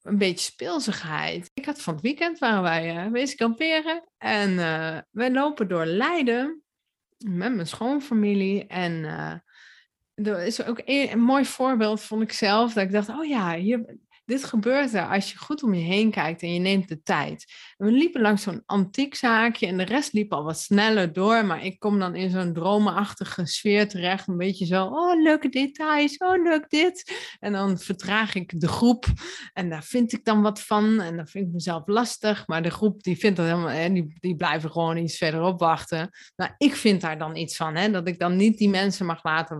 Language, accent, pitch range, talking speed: Dutch, Dutch, 180-255 Hz, 200 wpm